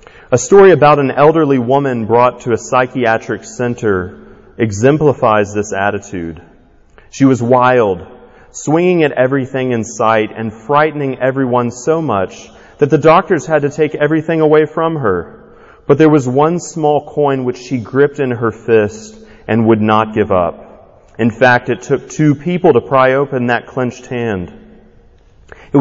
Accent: American